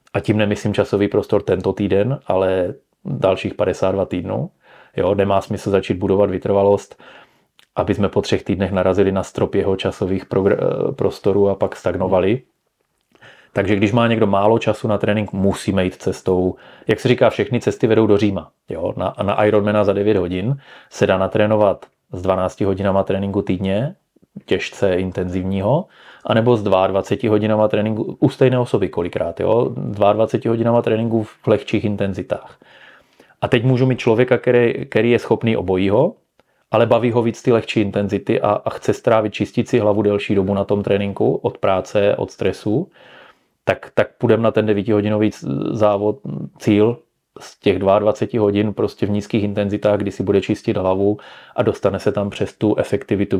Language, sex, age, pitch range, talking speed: Czech, male, 30-49, 100-110 Hz, 160 wpm